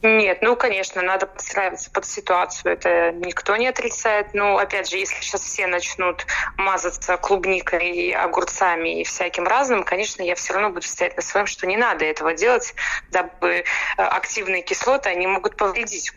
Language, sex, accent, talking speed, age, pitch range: Russian, female, native, 165 wpm, 20-39, 180-215 Hz